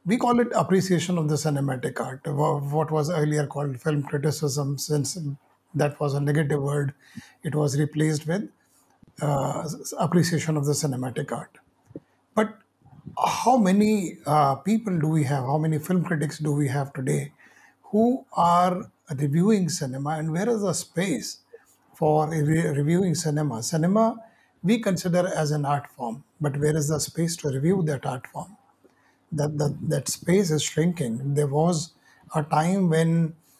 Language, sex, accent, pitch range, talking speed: Hindi, male, native, 150-180 Hz, 155 wpm